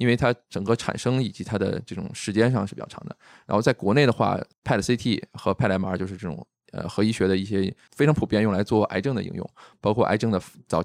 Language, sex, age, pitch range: Chinese, male, 20-39, 95-115 Hz